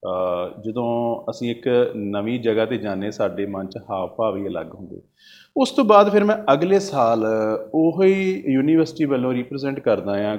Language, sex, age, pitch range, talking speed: Punjabi, male, 30-49, 115-155 Hz, 160 wpm